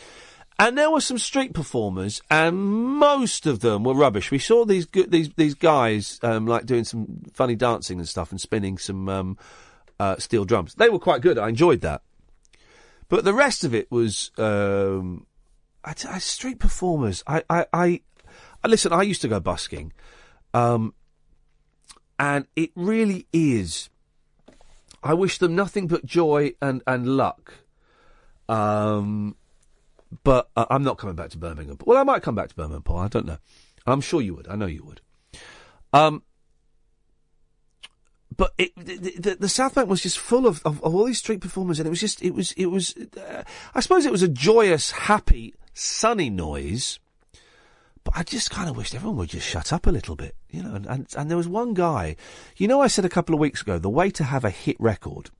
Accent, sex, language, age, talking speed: British, male, English, 40-59, 195 wpm